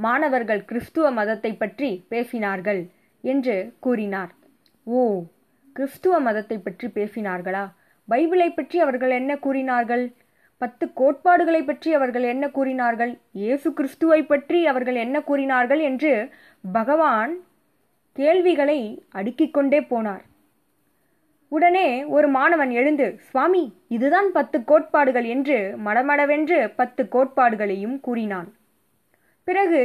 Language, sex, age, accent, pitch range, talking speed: Tamil, female, 20-39, native, 230-310 Hz, 95 wpm